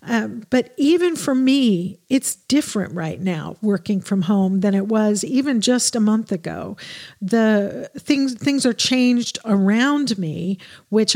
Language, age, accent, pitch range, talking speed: English, 50-69, American, 195-225 Hz, 150 wpm